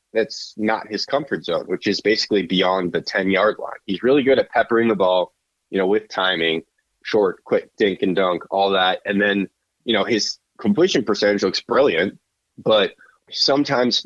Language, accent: English, American